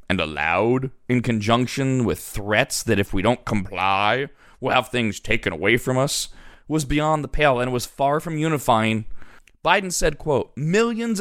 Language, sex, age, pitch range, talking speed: English, male, 20-39, 120-170 Hz, 165 wpm